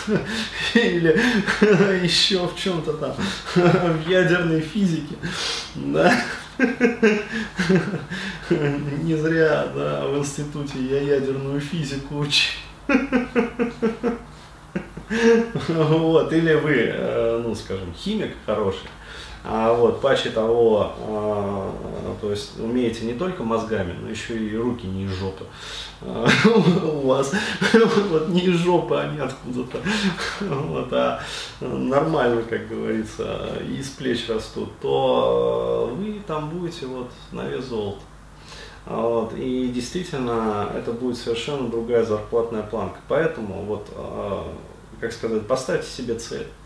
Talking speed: 110 wpm